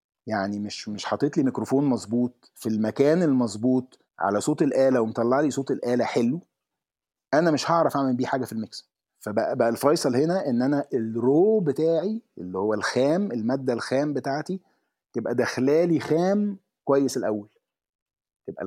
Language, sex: Arabic, male